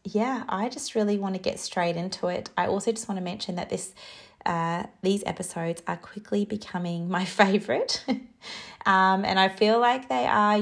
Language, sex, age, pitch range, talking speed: English, female, 30-49, 170-215 Hz, 185 wpm